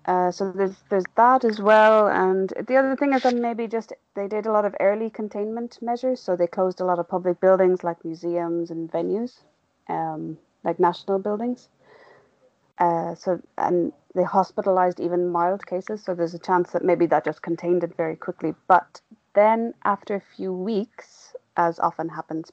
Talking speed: 180 wpm